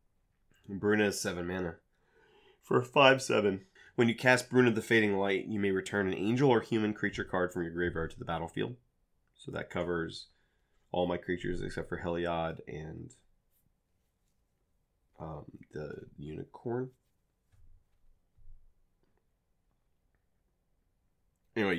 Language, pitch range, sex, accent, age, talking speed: English, 90-115 Hz, male, American, 30-49, 120 wpm